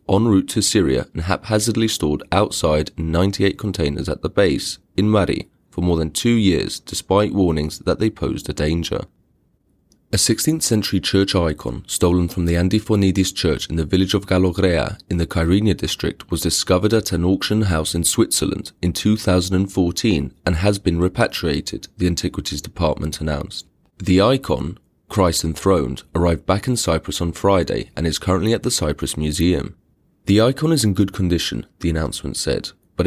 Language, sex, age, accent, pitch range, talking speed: English, male, 30-49, British, 85-105 Hz, 165 wpm